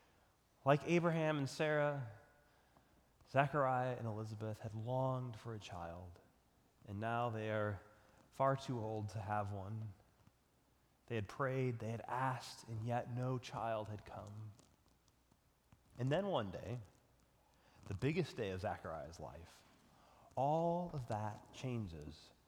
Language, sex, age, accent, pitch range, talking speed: English, male, 30-49, American, 120-160 Hz, 130 wpm